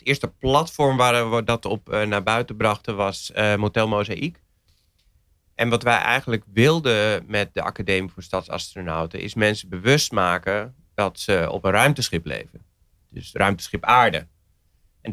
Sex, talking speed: male, 145 wpm